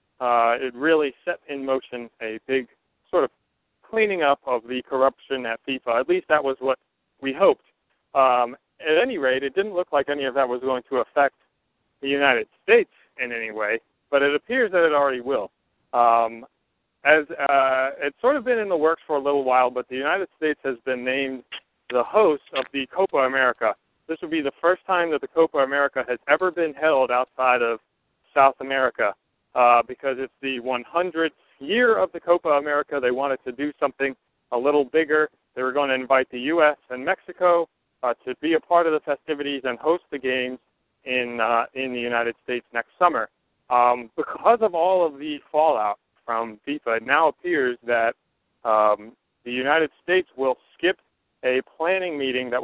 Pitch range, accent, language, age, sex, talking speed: 125-155 Hz, American, English, 40-59, male, 190 wpm